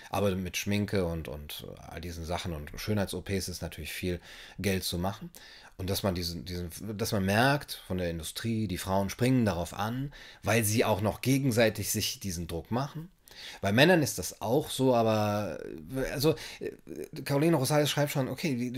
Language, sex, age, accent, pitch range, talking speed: German, male, 30-49, German, 95-125 Hz, 175 wpm